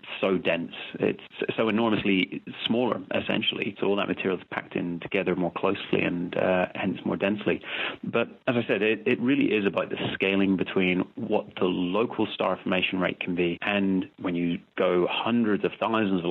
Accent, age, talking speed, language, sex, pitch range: British, 30-49, 185 wpm, English, male, 90-105 Hz